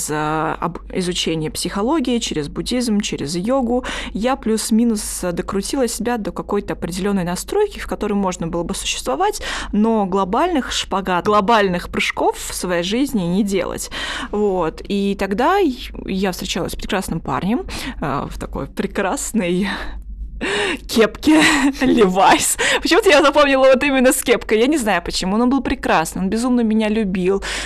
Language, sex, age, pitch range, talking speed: Russian, female, 20-39, 180-240 Hz, 135 wpm